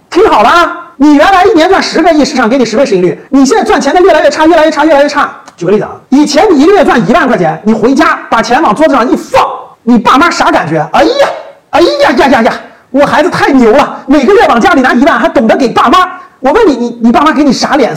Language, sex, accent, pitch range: Chinese, male, native, 245-350 Hz